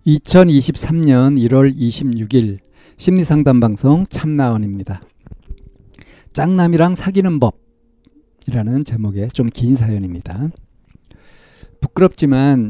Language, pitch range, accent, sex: Korean, 115-155 Hz, native, male